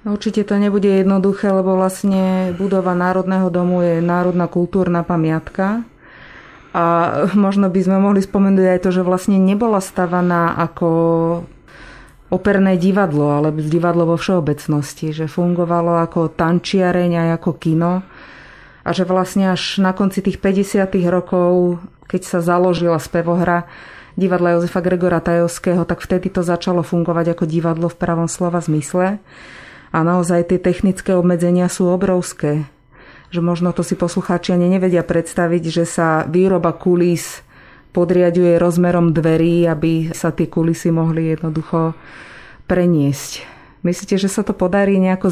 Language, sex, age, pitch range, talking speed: Slovak, female, 30-49, 170-185 Hz, 135 wpm